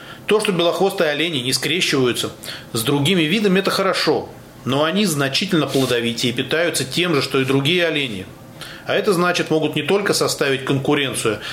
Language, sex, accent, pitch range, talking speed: Russian, male, native, 130-170 Hz, 160 wpm